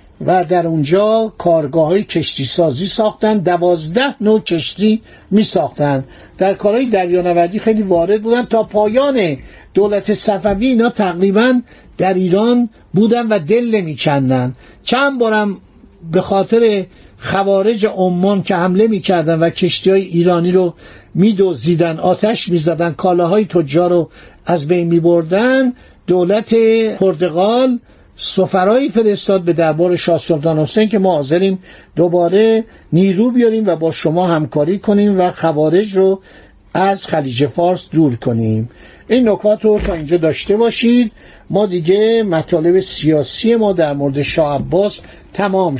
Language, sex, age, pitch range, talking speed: Persian, male, 60-79, 165-210 Hz, 130 wpm